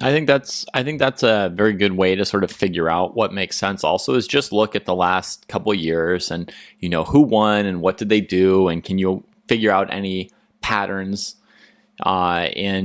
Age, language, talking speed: 30-49, English, 215 wpm